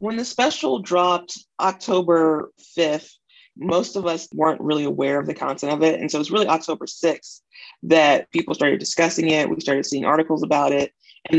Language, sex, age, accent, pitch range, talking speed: English, female, 30-49, American, 140-165 Hz, 190 wpm